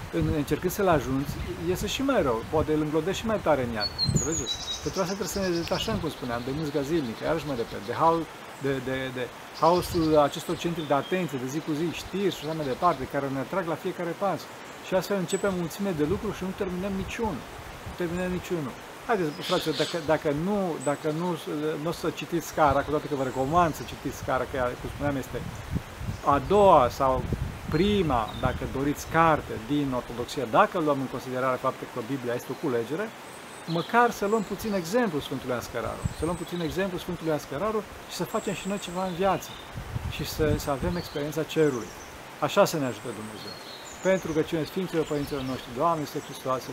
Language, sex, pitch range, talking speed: Romanian, male, 135-180 Hz, 195 wpm